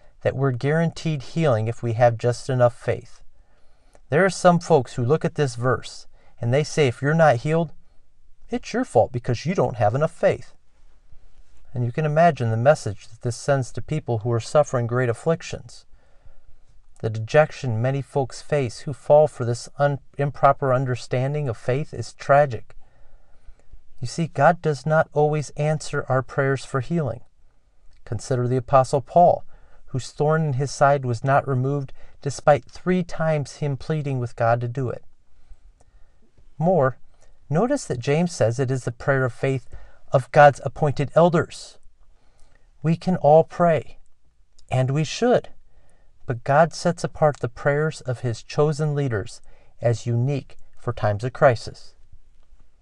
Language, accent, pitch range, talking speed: English, American, 120-150 Hz, 155 wpm